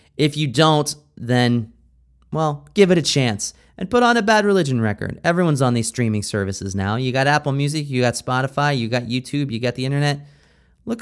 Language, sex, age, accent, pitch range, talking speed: English, male, 30-49, American, 110-150 Hz, 200 wpm